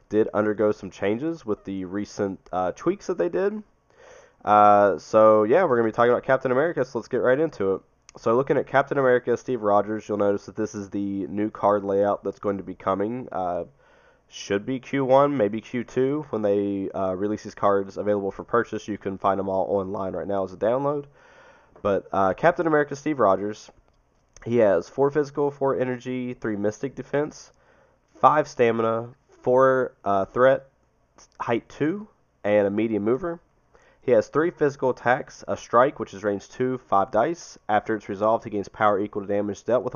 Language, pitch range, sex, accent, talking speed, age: English, 100-130 Hz, male, American, 190 wpm, 20-39